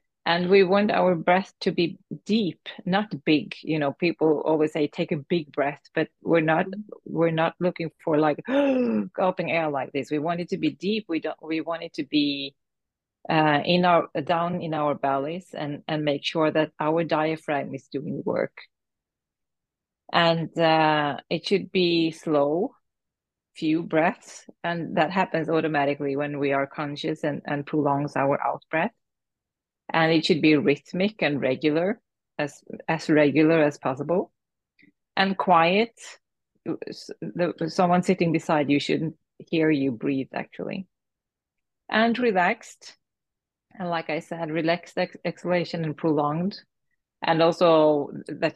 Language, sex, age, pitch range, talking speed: English, female, 30-49, 150-175 Hz, 150 wpm